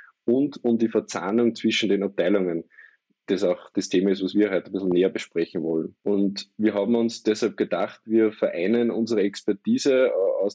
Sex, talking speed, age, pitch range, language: male, 175 wpm, 20-39, 100-115 Hz, German